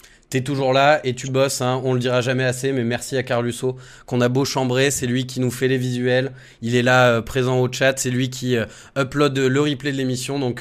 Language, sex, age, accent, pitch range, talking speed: French, male, 20-39, French, 125-180 Hz, 250 wpm